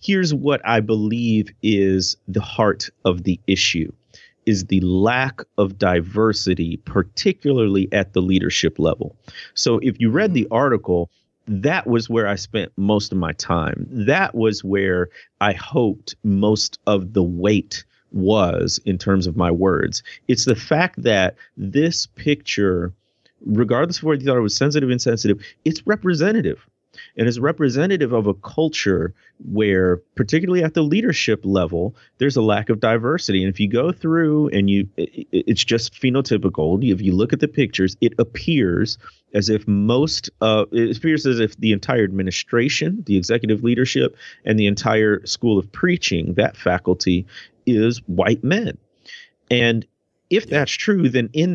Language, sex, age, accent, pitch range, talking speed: English, male, 30-49, American, 95-130 Hz, 155 wpm